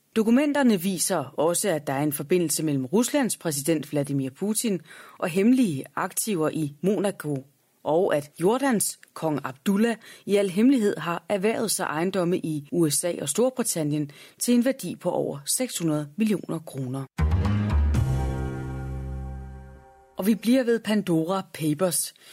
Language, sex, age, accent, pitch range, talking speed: Danish, female, 30-49, native, 150-205 Hz, 130 wpm